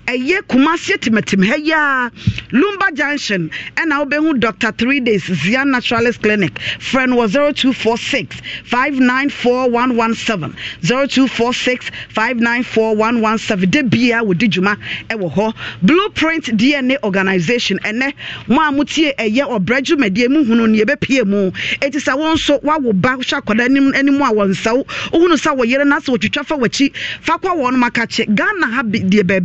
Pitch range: 215-275 Hz